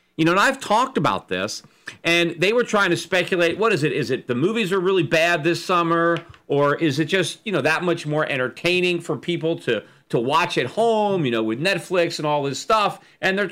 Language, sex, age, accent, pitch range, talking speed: English, male, 40-59, American, 150-190 Hz, 230 wpm